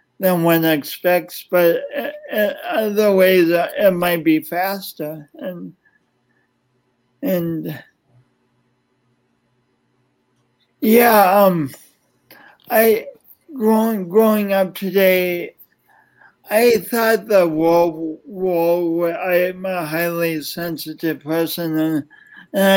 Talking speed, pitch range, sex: 80 wpm, 155-190 Hz, male